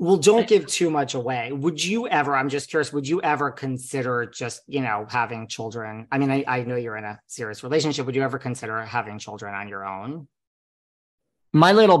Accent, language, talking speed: American, English, 210 wpm